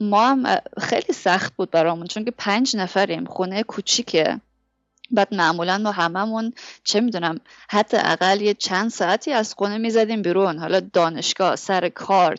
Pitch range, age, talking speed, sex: 185-240 Hz, 20-39, 150 wpm, female